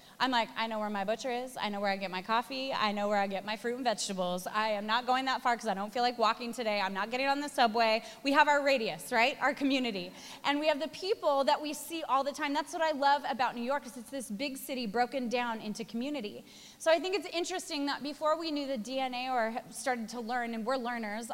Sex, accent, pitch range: female, American, 225-300 Hz